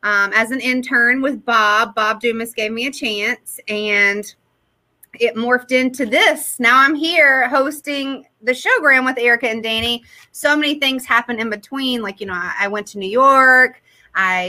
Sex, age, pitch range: female, 30-49, 215-265 Hz